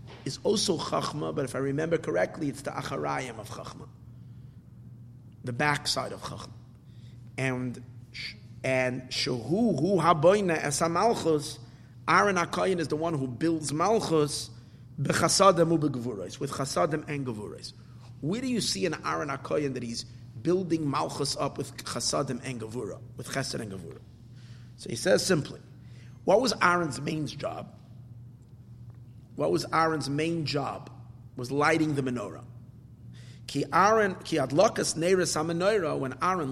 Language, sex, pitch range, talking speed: English, male, 120-165 Hz, 120 wpm